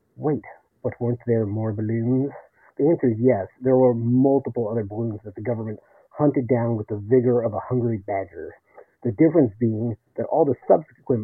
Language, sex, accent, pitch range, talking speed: English, male, American, 110-130 Hz, 180 wpm